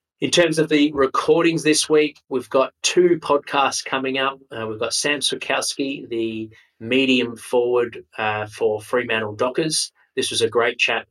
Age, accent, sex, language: 20-39, Australian, male, English